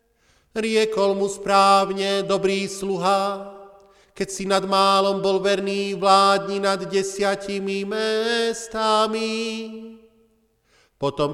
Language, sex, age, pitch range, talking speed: Slovak, male, 40-59, 195-220 Hz, 85 wpm